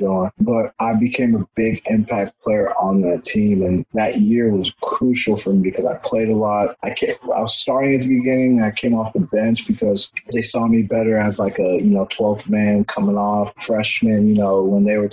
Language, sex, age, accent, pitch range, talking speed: English, male, 20-39, American, 100-115 Hz, 225 wpm